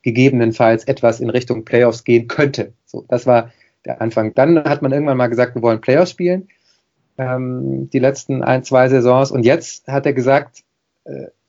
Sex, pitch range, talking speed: male, 120-145 Hz, 180 wpm